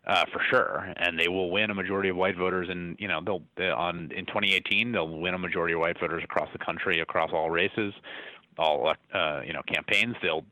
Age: 30-49